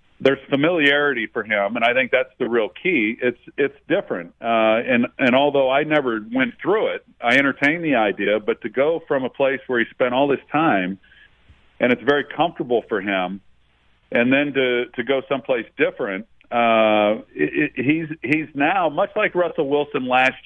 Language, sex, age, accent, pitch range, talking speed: English, male, 50-69, American, 115-135 Hz, 185 wpm